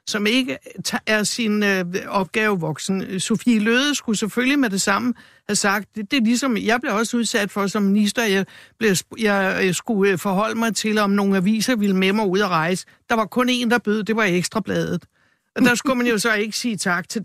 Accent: native